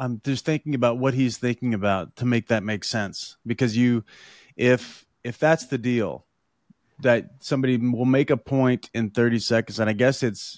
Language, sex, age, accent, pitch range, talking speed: English, male, 30-49, American, 110-125 Hz, 185 wpm